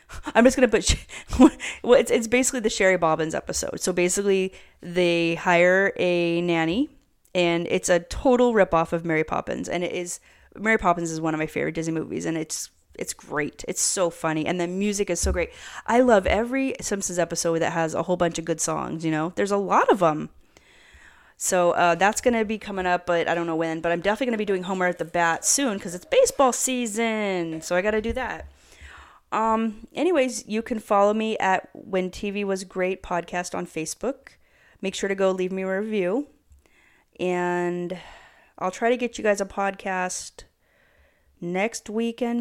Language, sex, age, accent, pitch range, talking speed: English, female, 30-49, American, 170-220 Hz, 200 wpm